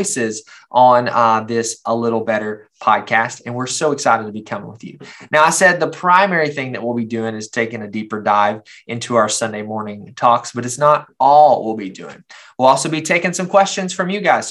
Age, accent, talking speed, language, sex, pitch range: 20-39, American, 215 wpm, English, male, 115-150 Hz